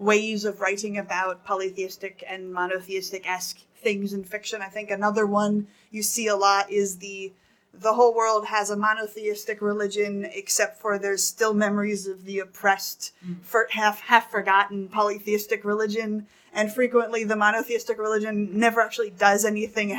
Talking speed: 150 wpm